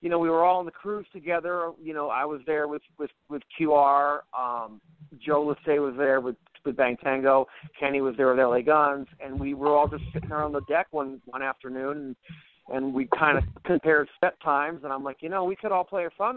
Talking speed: 235 wpm